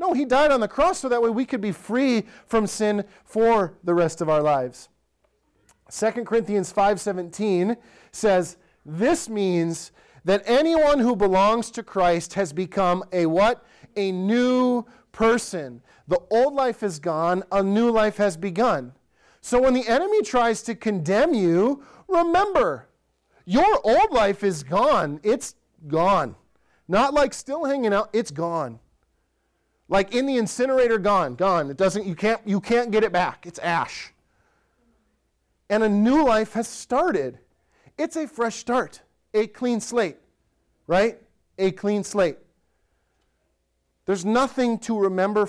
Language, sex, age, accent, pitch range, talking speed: English, male, 30-49, American, 180-235 Hz, 145 wpm